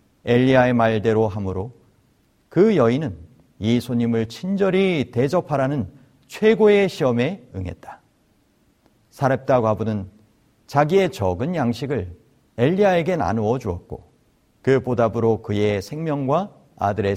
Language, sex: Korean, male